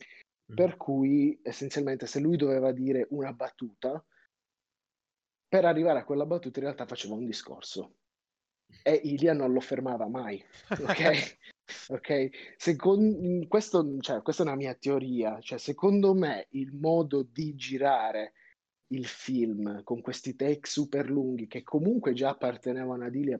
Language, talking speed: Italian, 140 wpm